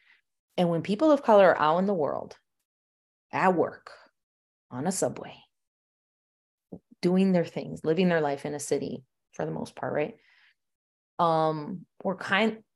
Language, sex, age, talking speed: English, female, 20-39, 150 wpm